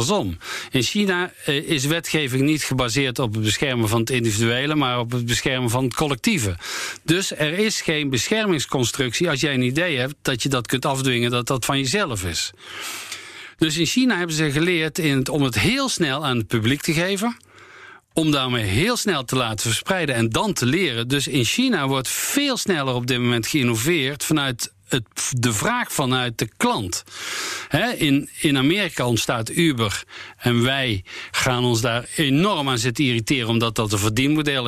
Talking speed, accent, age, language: 180 wpm, Dutch, 50-69, Dutch